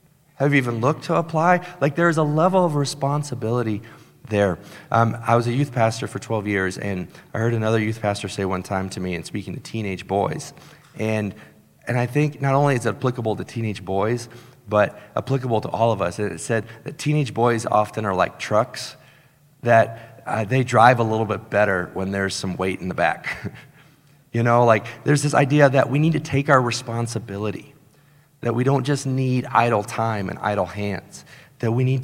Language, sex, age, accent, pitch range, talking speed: English, male, 30-49, American, 110-140 Hz, 200 wpm